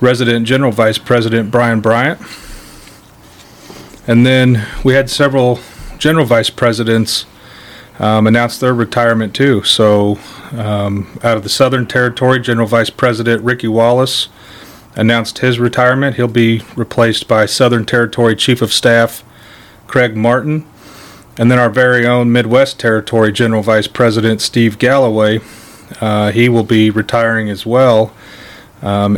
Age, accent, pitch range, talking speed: 30-49, American, 105-120 Hz, 135 wpm